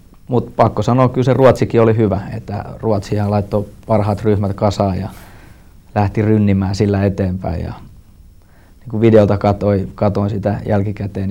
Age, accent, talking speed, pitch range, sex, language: 20-39, native, 135 wpm, 95-105 Hz, male, Finnish